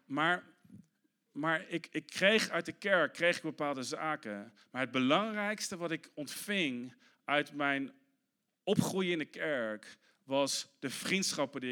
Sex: male